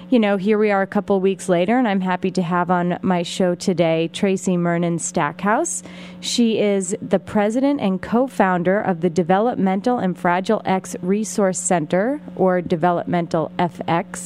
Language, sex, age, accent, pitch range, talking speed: English, female, 30-49, American, 180-225 Hz, 155 wpm